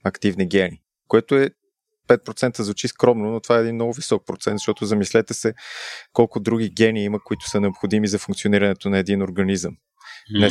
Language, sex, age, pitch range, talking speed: Bulgarian, male, 20-39, 100-115 Hz, 170 wpm